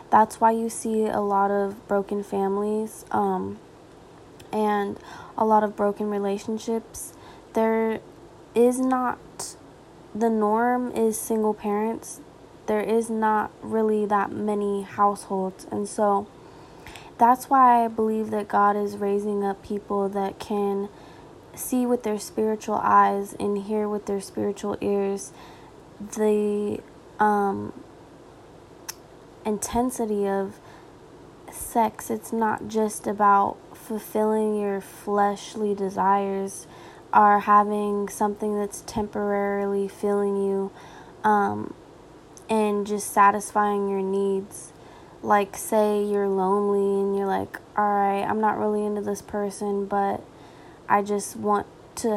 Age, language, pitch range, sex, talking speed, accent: 10-29, English, 200-215 Hz, female, 115 wpm, American